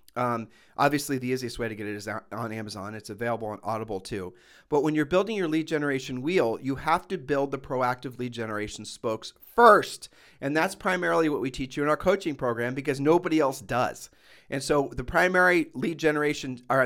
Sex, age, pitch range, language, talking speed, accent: male, 40-59, 125-155 Hz, English, 200 wpm, American